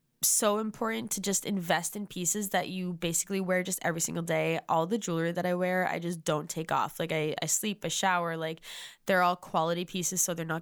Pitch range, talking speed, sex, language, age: 170-200 Hz, 230 wpm, female, English, 10-29